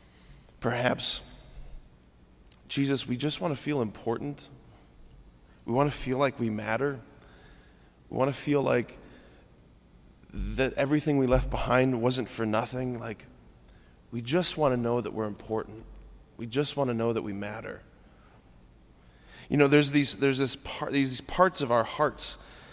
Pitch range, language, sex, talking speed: 110-145 Hz, English, male, 150 wpm